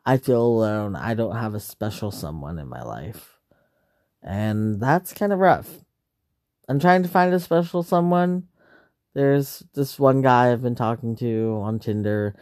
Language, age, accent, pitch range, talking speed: English, 20-39, American, 115-145 Hz, 165 wpm